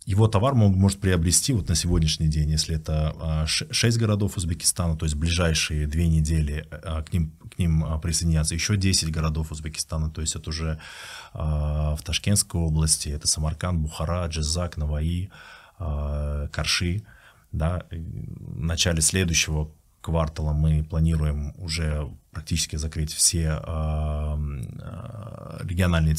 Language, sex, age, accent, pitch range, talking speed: Russian, male, 20-39, native, 80-95 Hz, 120 wpm